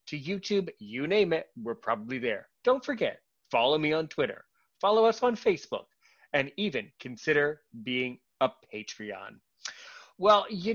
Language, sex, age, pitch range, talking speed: English, male, 30-49, 135-180 Hz, 145 wpm